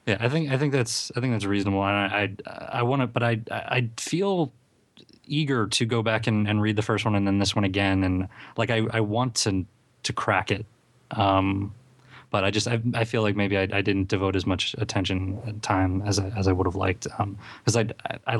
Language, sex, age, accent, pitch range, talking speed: English, male, 20-39, American, 105-125 Hz, 235 wpm